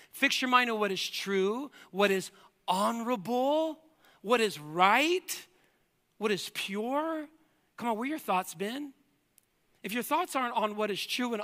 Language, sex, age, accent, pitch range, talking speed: English, male, 40-59, American, 175-230 Hz, 170 wpm